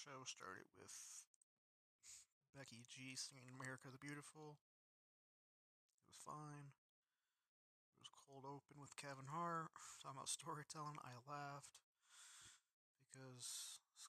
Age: 30-49